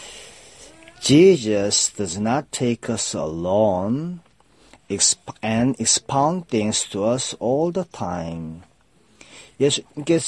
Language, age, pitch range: Korean, 40-59, 110-160 Hz